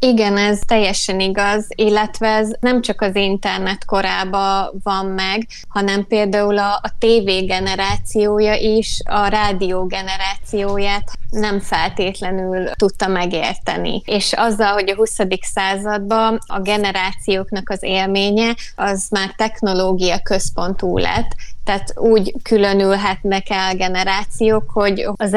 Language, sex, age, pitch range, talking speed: Hungarian, female, 20-39, 190-215 Hz, 115 wpm